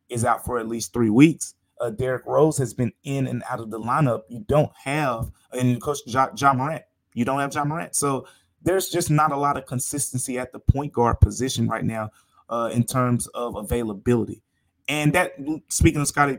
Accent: American